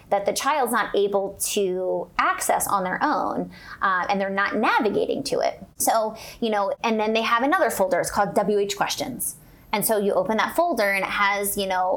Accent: American